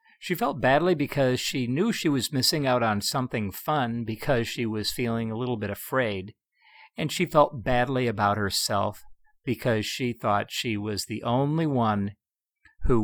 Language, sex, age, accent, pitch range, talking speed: English, male, 50-69, American, 105-135 Hz, 165 wpm